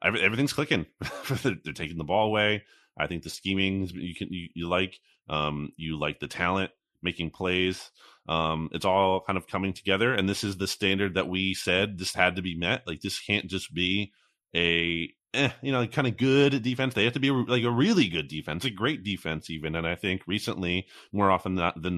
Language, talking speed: English, 215 wpm